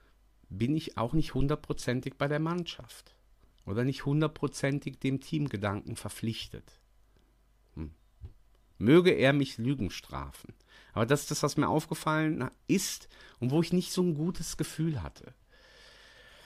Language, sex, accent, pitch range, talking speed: German, male, German, 110-145 Hz, 135 wpm